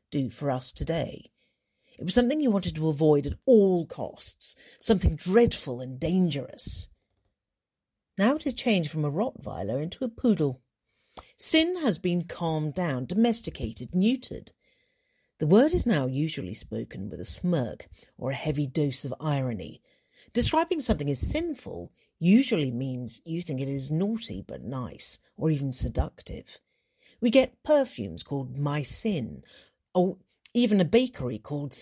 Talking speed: 145 wpm